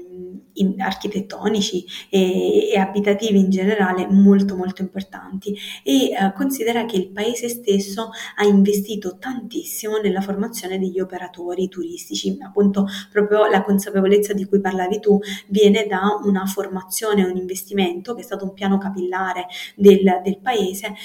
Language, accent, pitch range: Italian, native, 190-210 Hz